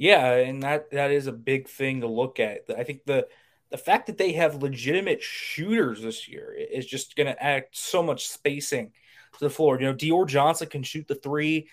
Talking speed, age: 215 wpm, 20-39